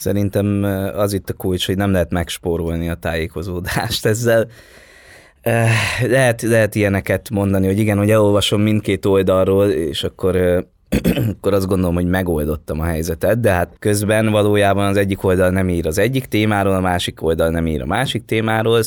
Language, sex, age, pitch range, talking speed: Hungarian, male, 20-39, 85-105 Hz, 160 wpm